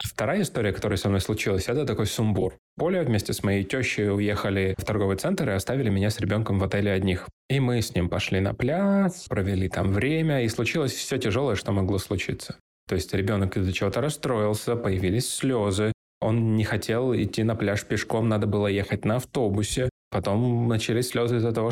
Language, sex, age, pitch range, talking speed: Russian, male, 20-39, 100-120 Hz, 190 wpm